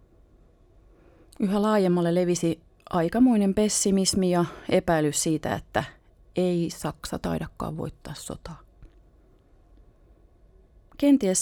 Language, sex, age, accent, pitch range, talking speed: Finnish, female, 30-49, native, 150-195 Hz, 80 wpm